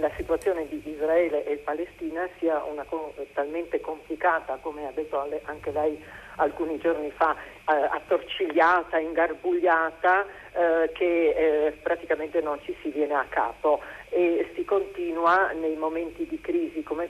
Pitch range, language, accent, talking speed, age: 150-175 Hz, Italian, native, 125 wpm, 50-69